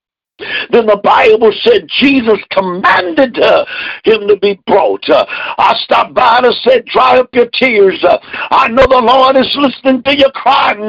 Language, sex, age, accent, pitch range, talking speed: English, male, 60-79, American, 235-280 Hz, 175 wpm